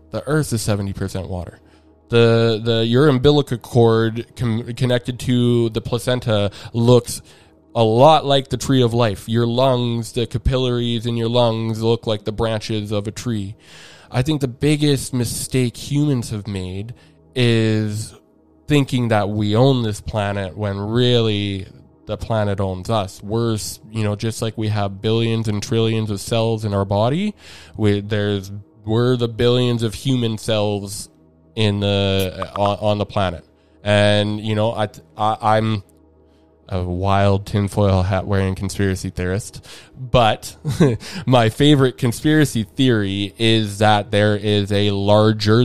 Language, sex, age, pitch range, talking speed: English, male, 20-39, 100-120 Hz, 145 wpm